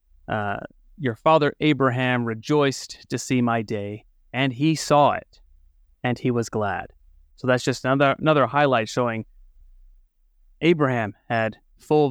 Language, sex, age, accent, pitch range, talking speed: English, male, 30-49, American, 100-140 Hz, 135 wpm